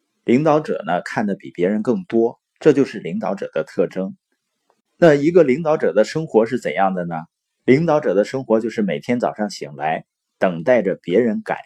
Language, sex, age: Chinese, male, 30-49